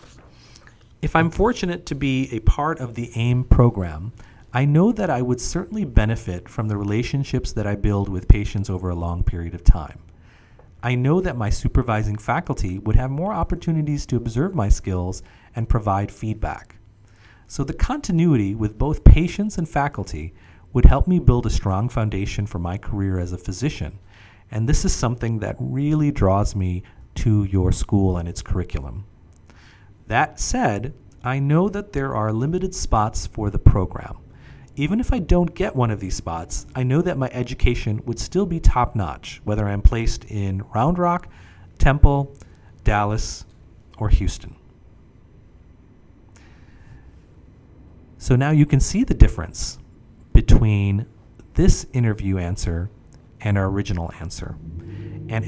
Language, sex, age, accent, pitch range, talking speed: English, male, 40-59, American, 95-135 Hz, 150 wpm